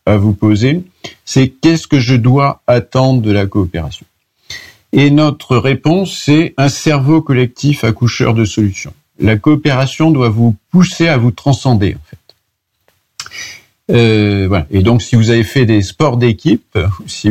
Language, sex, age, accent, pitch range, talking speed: French, male, 50-69, French, 100-140 Hz, 155 wpm